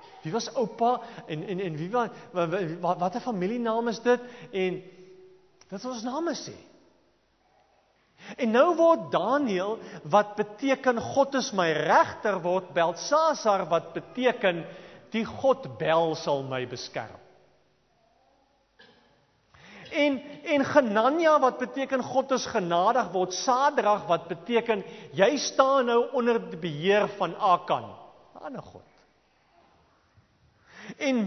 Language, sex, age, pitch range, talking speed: English, male, 40-59, 175-260 Hz, 120 wpm